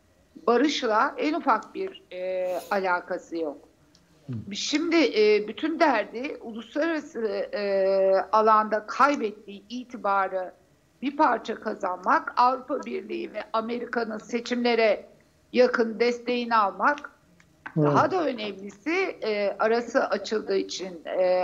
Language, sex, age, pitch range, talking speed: Turkish, female, 60-79, 200-265 Hz, 100 wpm